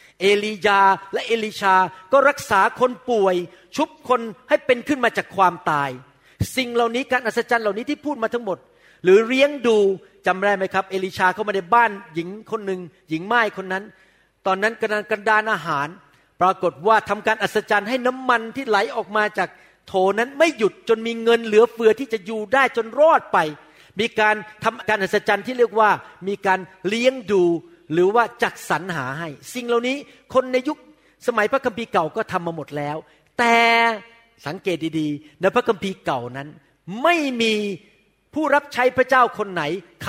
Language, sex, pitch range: Thai, male, 185-250 Hz